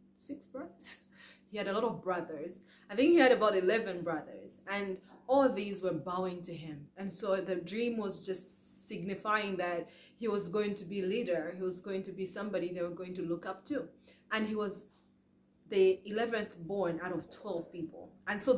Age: 20-39